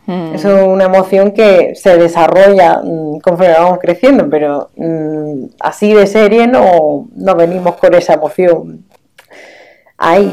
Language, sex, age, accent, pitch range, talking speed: Spanish, female, 20-39, Spanish, 180-235 Hz, 115 wpm